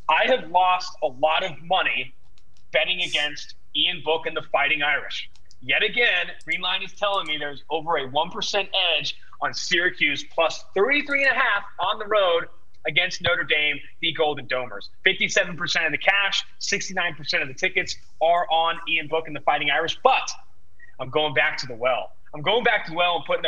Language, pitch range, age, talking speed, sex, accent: English, 150-190 Hz, 30-49, 180 wpm, male, American